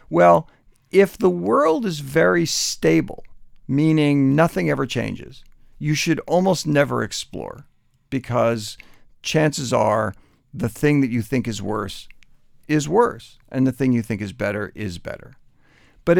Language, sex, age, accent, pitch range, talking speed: English, male, 50-69, American, 125-165 Hz, 140 wpm